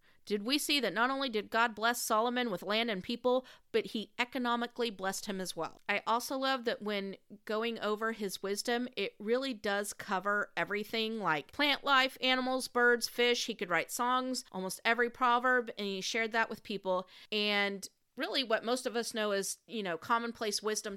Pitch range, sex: 195-245 Hz, female